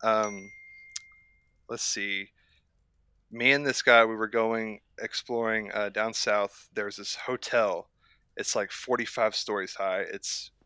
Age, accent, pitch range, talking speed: 20-39, American, 100-115 Hz, 130 wpm